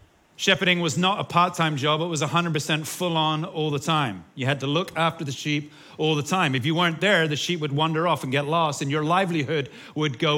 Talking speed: 230 wpm